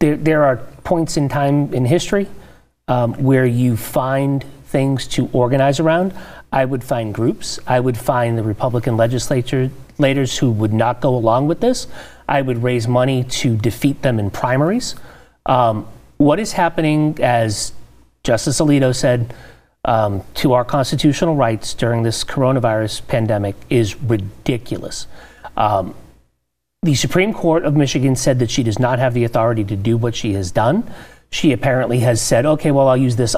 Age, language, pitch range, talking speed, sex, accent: 40-59, English, 115-150 Hz, 160 wpm, male, American